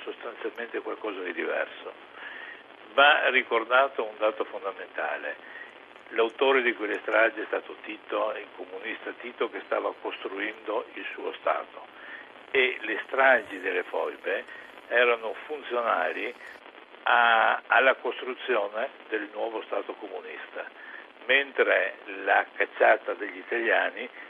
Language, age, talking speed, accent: Italian, 60-79, 110 wpm, native